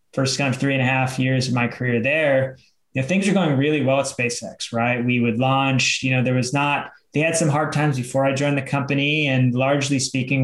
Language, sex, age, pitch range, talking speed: English, male, 20-39, 120-145 Hz, 245 wpm